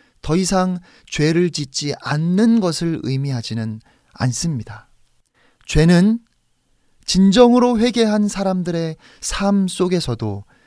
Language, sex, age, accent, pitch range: Korean, male, 30-49, native, 130-200 Hz